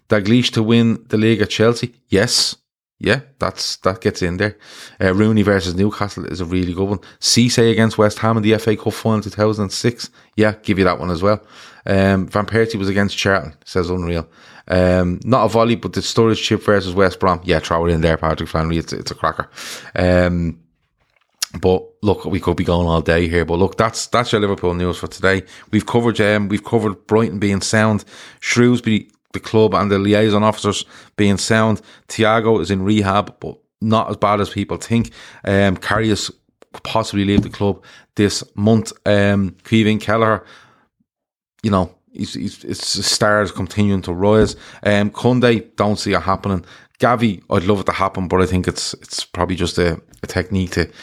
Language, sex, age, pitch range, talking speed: English, male, 20-39, 90-110 Hz, 190 wpm